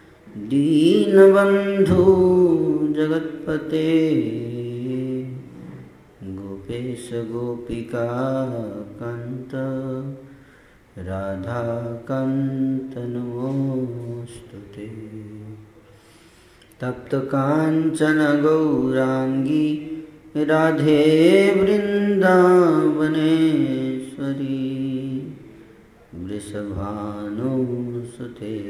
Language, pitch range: Hindi, 115-155 Hz